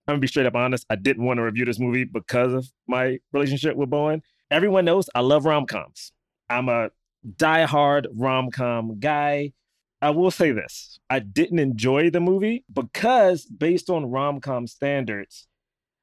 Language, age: English, 30-49